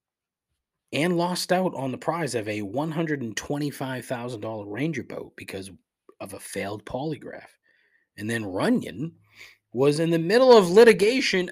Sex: male